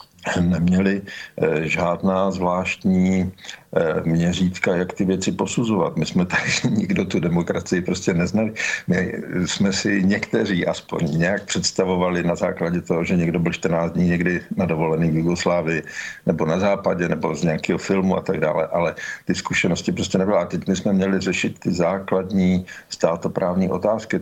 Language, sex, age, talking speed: Slovak, male, 50-69, 150 wpm